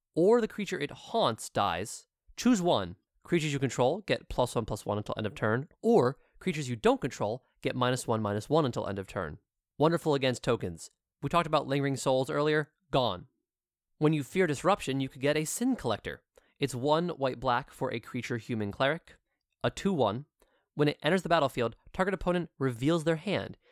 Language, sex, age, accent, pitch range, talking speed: English, male, 20-39, American, 120-165 Hz, 185 wpm